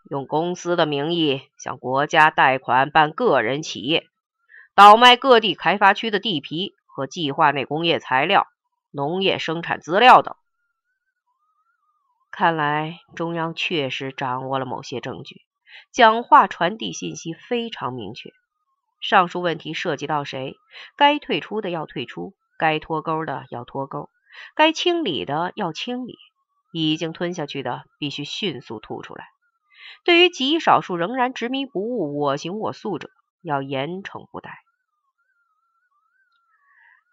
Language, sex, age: Chinese, female, 30-49